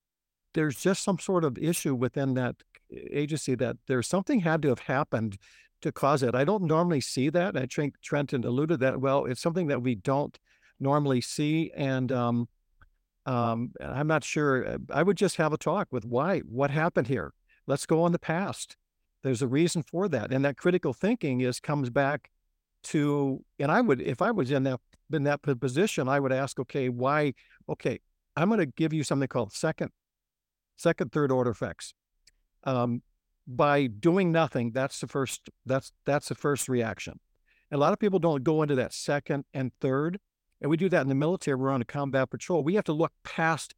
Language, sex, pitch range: English, male, 130-160 Hz